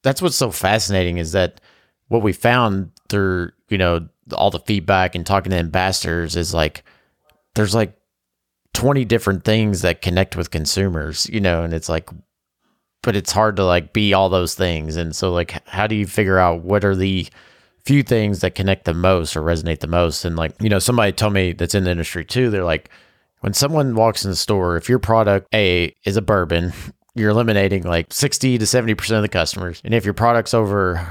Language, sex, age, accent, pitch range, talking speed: English, male, 30-49, American, 90-110 Hz, 205 wpm